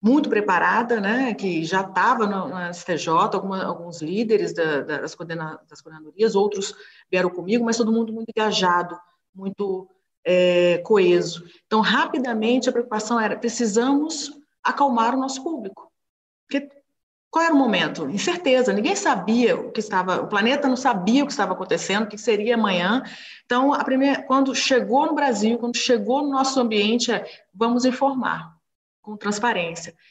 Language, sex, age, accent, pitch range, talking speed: Portuguese, female, 40-59, Brazilian, 195-240 Hz, 150 wpm